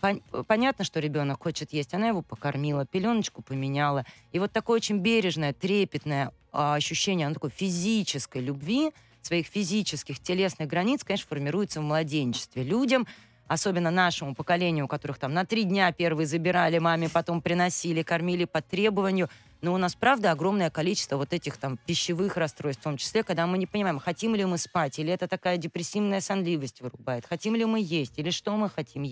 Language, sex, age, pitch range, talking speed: Russian, female, 20-39, 155-195 Hz, 165 wpm